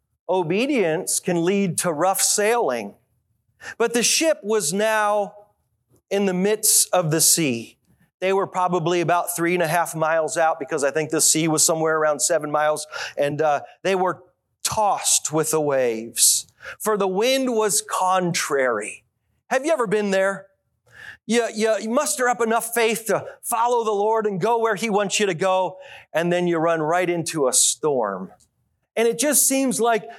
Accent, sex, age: American, male, 40-59